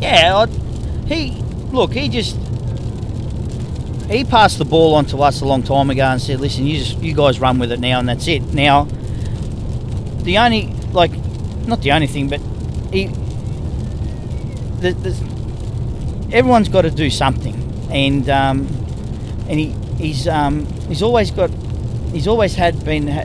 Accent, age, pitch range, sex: Australian, 40-59, 115-150 Hz, male